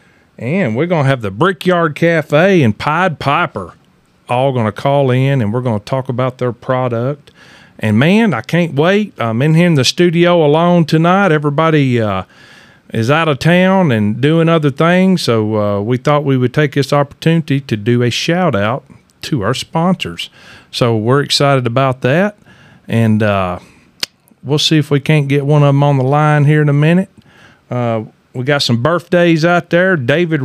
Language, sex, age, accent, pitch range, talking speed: English, male, 40-59, American, 115-160 Hz, 185 wpm